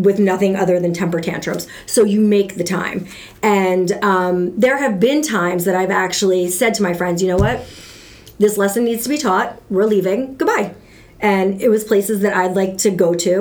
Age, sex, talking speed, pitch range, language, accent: 40-59, female, 205 wpm, 180-220 Hz, English, American